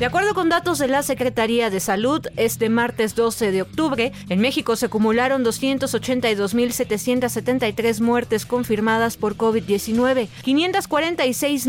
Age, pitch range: 30-49, 225-285 Hz